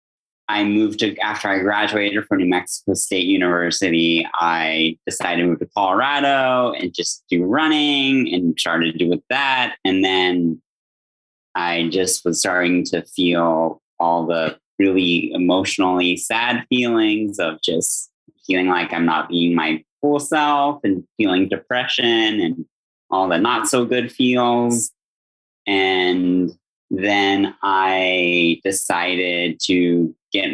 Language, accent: English, American